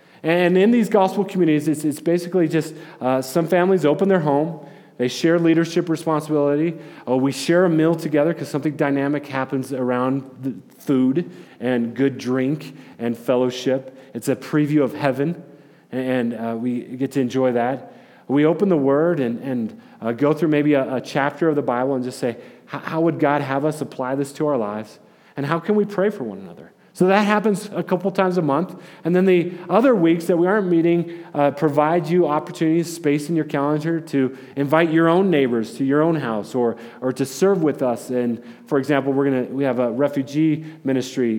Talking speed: 195 wpm